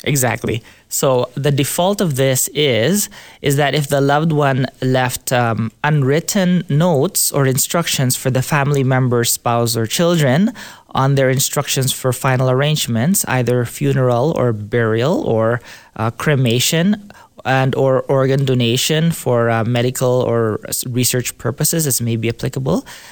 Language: English